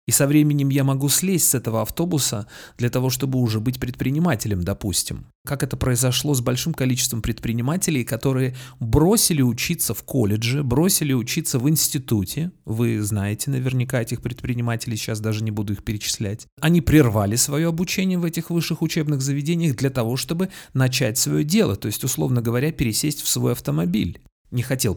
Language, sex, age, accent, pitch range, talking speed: Russian, male, 30-49, native, 120-155 Hz, 165 wpm